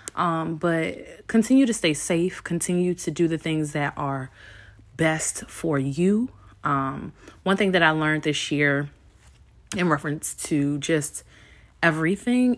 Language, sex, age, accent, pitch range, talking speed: English, female, 20-39, American, 145-195 Hz, 140 wpm